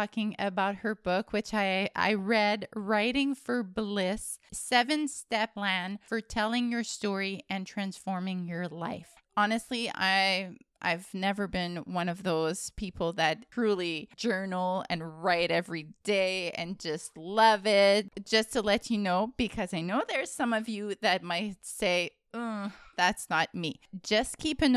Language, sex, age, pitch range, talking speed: English, female, 20-39, 195-250 Hz, 155 wpm